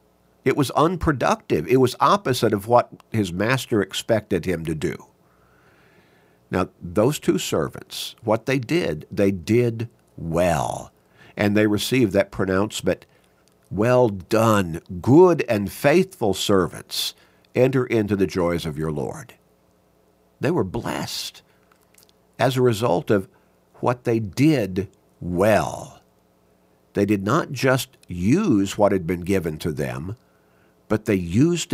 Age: 50-69